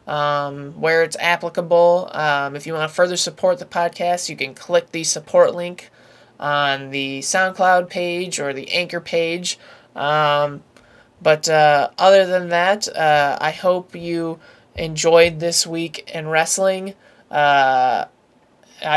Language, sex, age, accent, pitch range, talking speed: English, male, 20-39, American, 145-175 Hz, 135 wpm